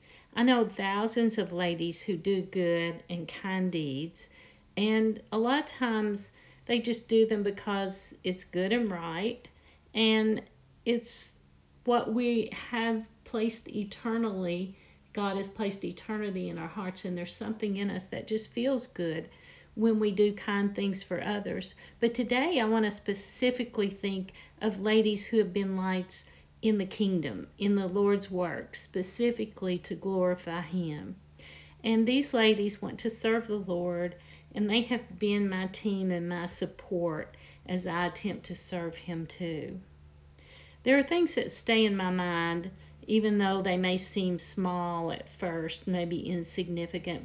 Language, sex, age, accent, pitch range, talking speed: English, female, 50-69, American, 175-220 Hz, 155 wpm